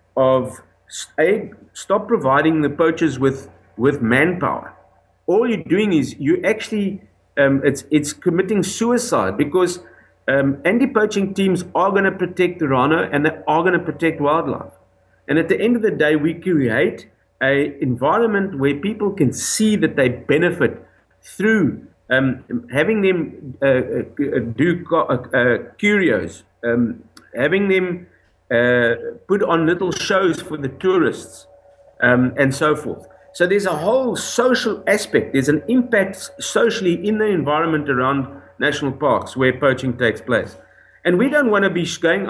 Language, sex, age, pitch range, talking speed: English, male, 50-69, 135-195 Hz, 155 wpm